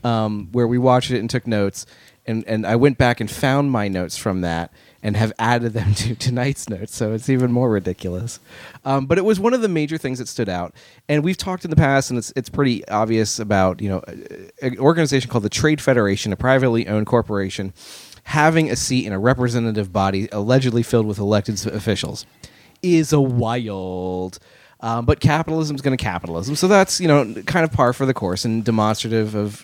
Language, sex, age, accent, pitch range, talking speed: English, male, 30-49, American, 105-130 Hz, 205 wpm